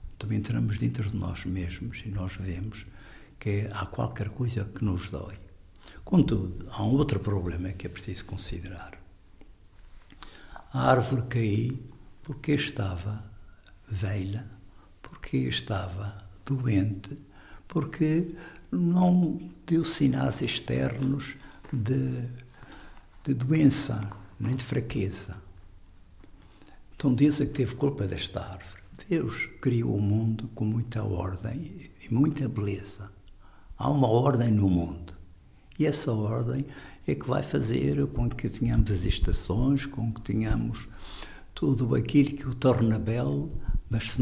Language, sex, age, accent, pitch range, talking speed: Portuguese, male, 60-79, Portuguese, 95-125 Hz, 120 wpm